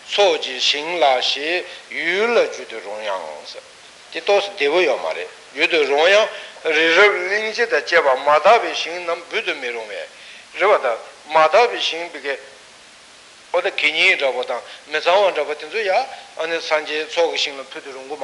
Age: 60-79